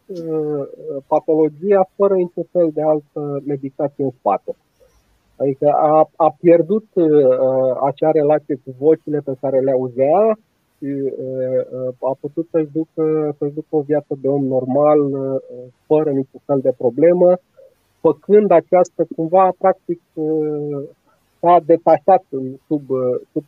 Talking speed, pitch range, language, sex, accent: 125 wpm, 130-165 Hz, Romanian, male, native